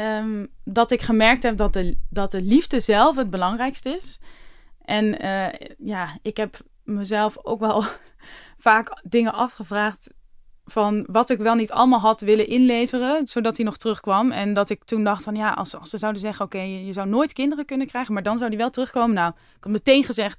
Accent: Dutch